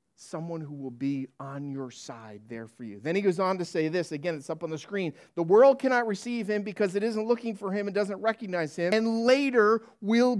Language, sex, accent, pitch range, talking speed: English, male, American, 200-245 Hz, 235 wpm